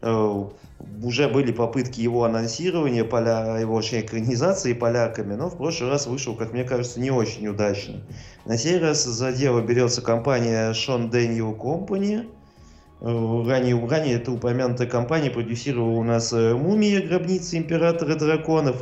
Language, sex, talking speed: Russian, male, 130 wpm